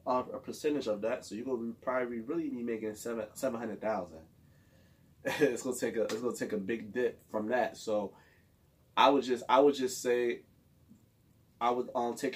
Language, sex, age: English, male, 20-39